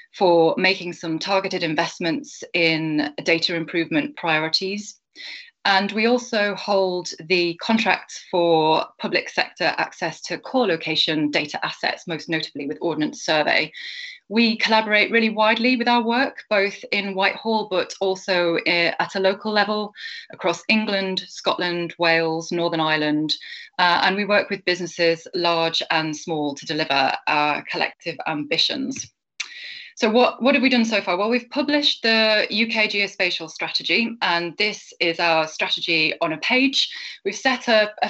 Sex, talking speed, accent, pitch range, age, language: female, 145 wpm, British, 165-220 Hz, 20-39, English